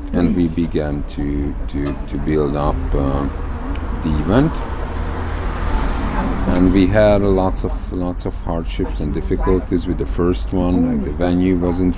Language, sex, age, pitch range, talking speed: Bulgarian, male, 40-59, 75-90 Hz, 145 wpm